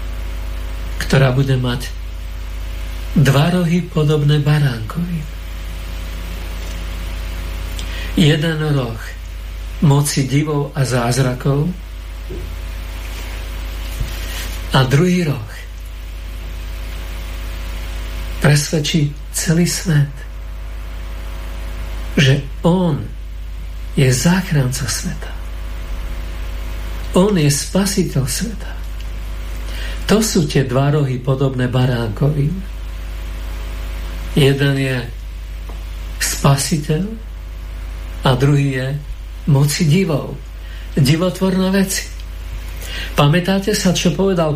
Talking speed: 65 wpm